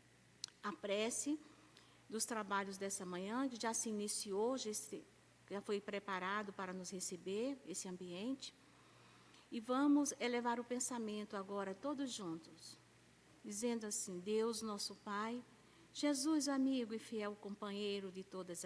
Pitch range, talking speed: 190-245 Hz, 125 wpm